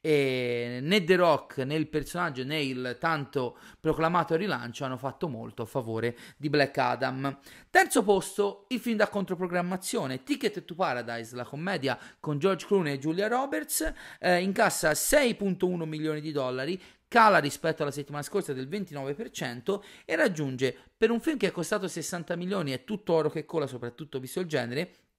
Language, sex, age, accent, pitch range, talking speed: Italian, male, 30-49, native, 135-195 Hz, 165 wpm